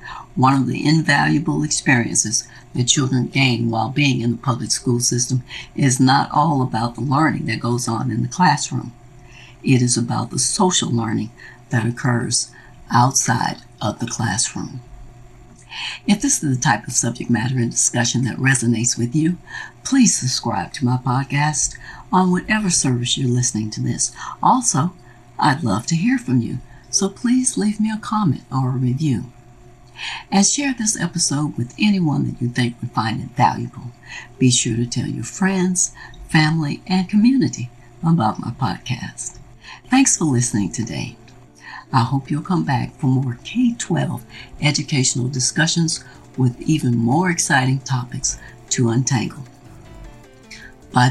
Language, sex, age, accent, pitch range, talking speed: English, female, 60-79, American, 120-155 Hz, 150 wpm